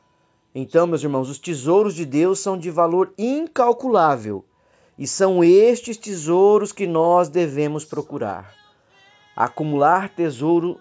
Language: Portuguese